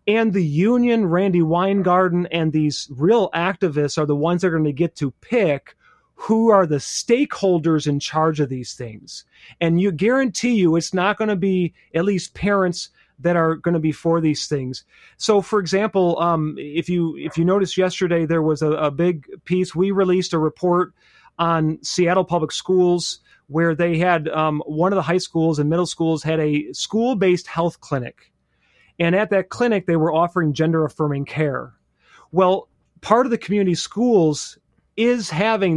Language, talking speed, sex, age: English, 175 wpm, male, 30-49